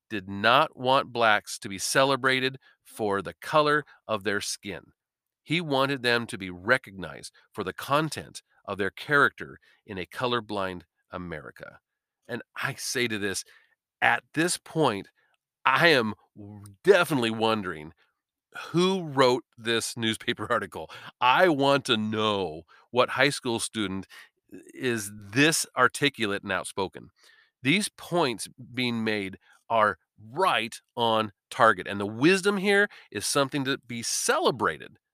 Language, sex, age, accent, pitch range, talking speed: English, male, 40-59, American, 110-155 Hz, 130 wpm